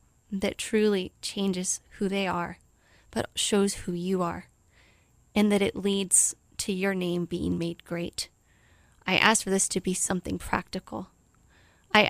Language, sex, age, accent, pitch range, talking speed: English, female, 20-39, American, 175-200 Hz, 150 wpm